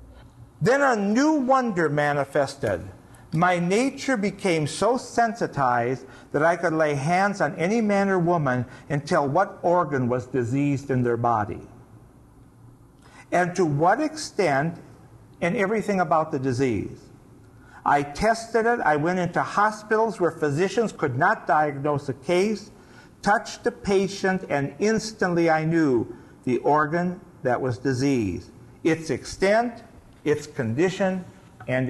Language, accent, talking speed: English, American, 130 wpm